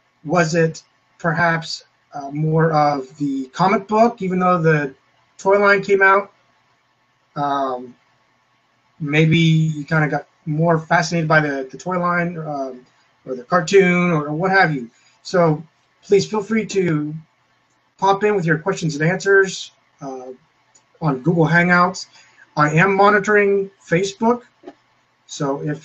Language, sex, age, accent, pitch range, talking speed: English, male, 30-49, American, 135-175 Hz, 135 wpm